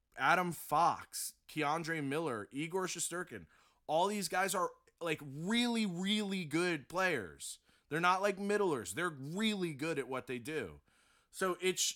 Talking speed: 135 wpm